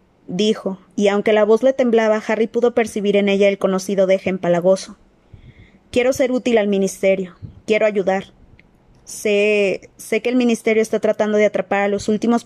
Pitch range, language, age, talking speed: 195-225 Hz, Spanish, 20-39, 170 wpm